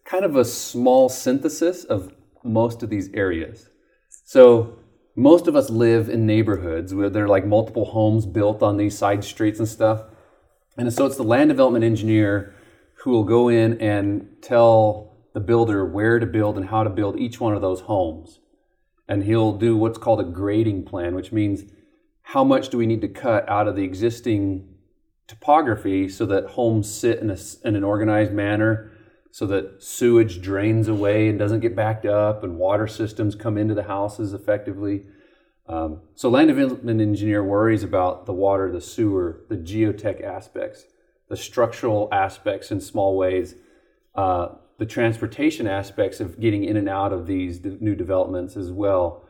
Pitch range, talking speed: 100-115 Hz, 175 wpm